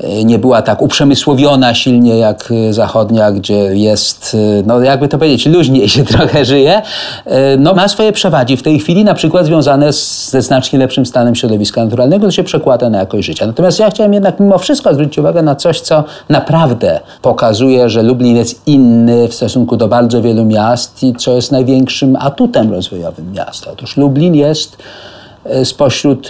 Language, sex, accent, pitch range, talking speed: Polish, male, native, 110-145 Hz, 165 wpm